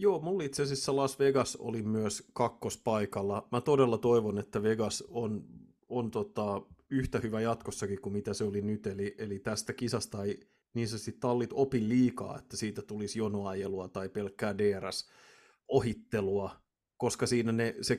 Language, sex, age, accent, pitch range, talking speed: Finnish, male, 30-49, native, 105-125 Hz, 155 wpm